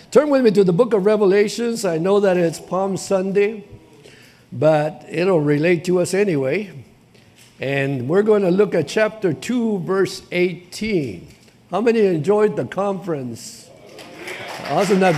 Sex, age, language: male, 60-79, English